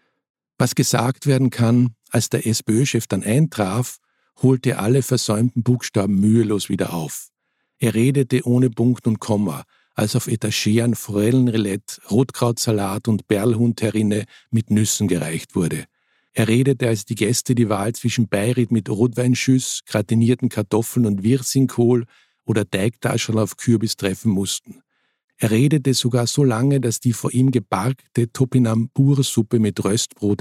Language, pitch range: German, 105-125 Hz